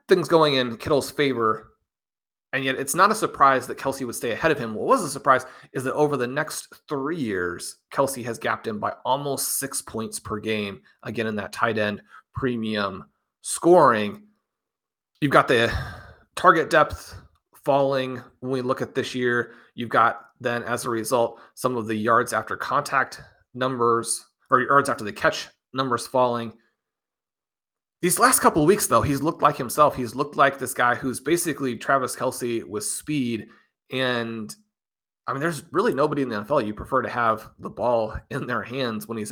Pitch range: 115-140 Hz